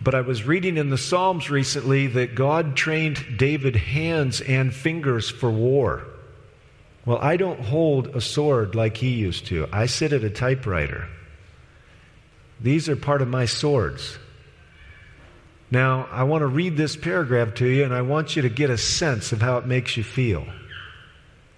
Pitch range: 110-145 Hz